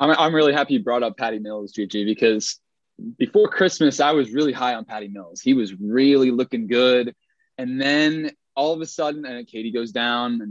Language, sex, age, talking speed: English, male, 20-39, 200 wpm